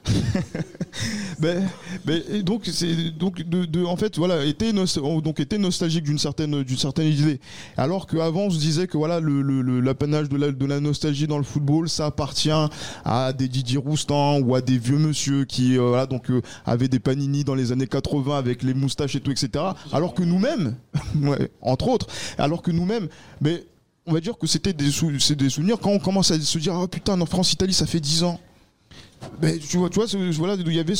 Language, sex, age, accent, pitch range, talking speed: French, male, 20-39, French, 140-175 Hz, 215 wpm